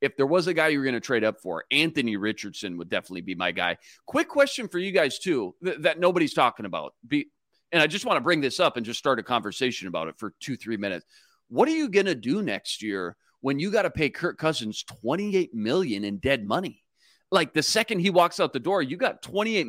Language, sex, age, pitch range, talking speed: English, male, 30-49, 115-170 Hz, 240 wpm